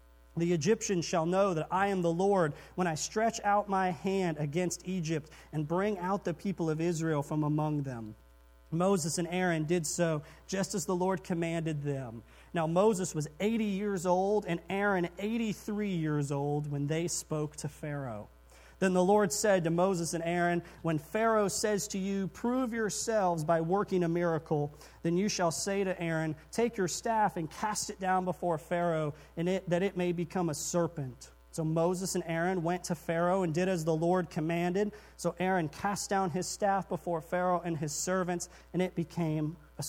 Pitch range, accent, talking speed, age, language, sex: 155-190 Hz, American, 185 wpm, 40-59, English, male